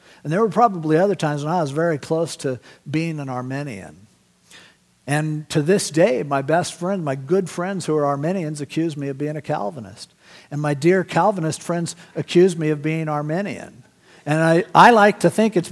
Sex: male